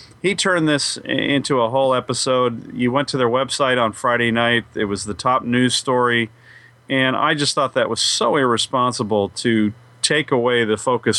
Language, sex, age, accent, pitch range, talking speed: English, male, 40-59, American, 115-135 Hz, 180 wpm